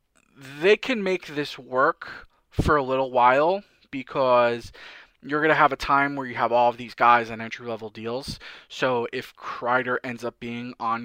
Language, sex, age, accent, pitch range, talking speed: English, male, 20-39, American, 115-140 Hz, 185 wpm